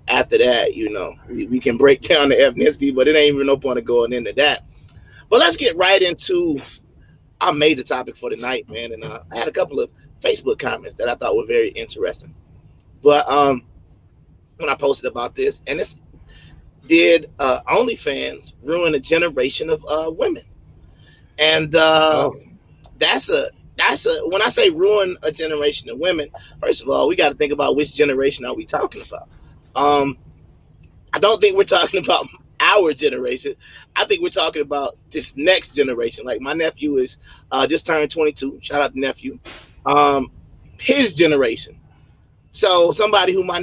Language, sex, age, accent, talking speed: English, male, 30-49, American, 175 wpm